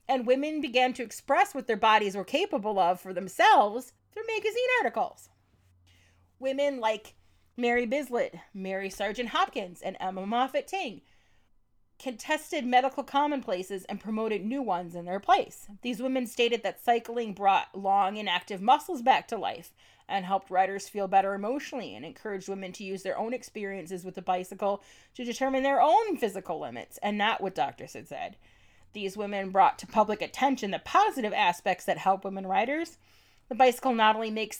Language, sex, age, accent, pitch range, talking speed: English, female, 30-49, American, 195-265 Hz, 170 wpm